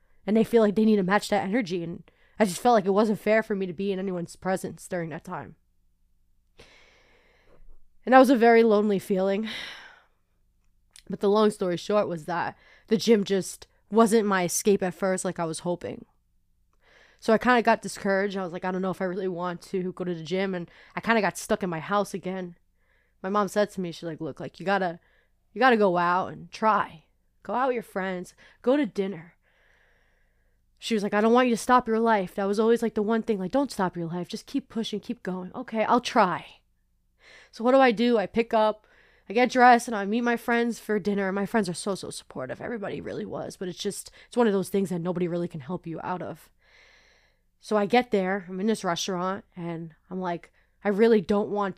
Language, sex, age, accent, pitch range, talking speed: English, female, 20-39, American, 185-220 Hz, 230 wpm